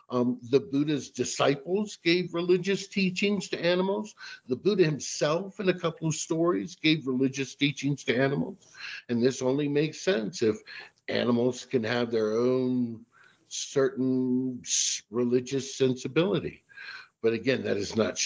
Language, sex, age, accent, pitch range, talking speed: English, male, 60-79, American, 125-170 Hz, 135 wpm